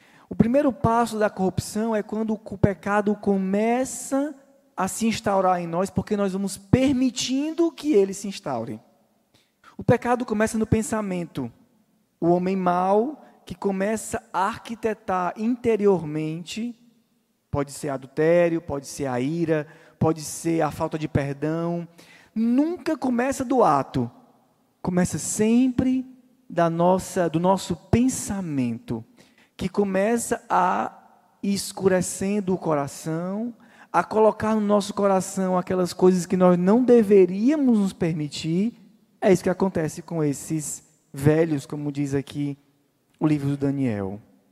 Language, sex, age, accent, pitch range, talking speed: Portuguese, male, 20-39, Brazilian, 160-220 Hz, 125 wpm